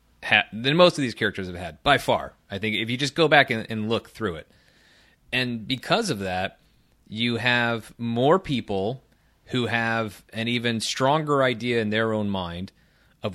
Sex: male